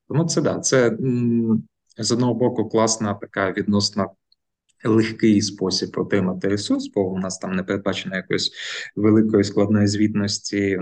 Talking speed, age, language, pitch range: 140 wpm, 20-39, Ukrainian, 95-125 Hz